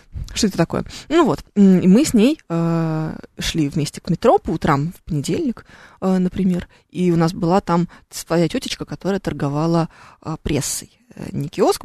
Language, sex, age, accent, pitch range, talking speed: Russian, female, 20-39, native, 160-200 Hz, 165 wpm